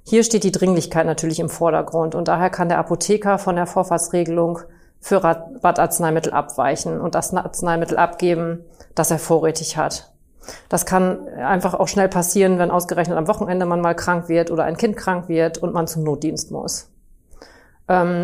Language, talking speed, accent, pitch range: German, 170 wpm, German, 170-195 Hz